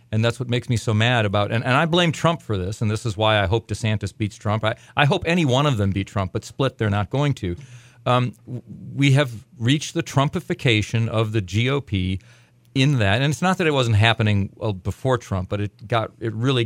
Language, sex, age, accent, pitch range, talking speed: English, male, 40-59, American, 105-130 Hz, 235 wpm